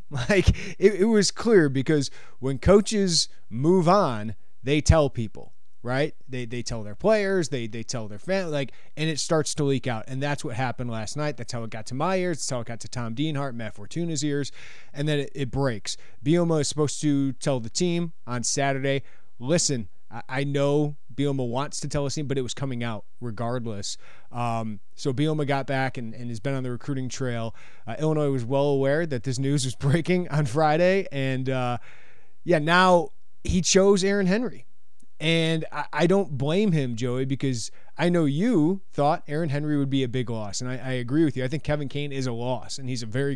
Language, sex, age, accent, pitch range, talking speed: English, male, 30-49, American, 125-155 Hz, 210 wpm